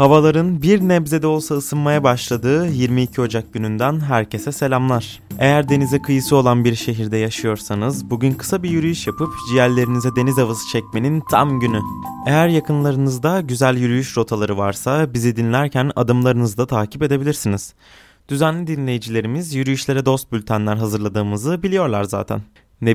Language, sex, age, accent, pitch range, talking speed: Turkish, male, 20-39, native, 110-140 Hz, 130 wpm